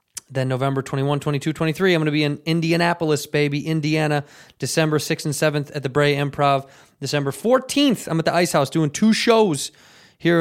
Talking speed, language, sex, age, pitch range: 185 wpm, English, male, 20-39, 135-155 Hz